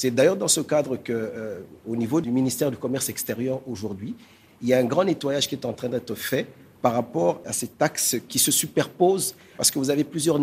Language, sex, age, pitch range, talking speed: French, male, 50-69, 115-150 Hz, 225 wpm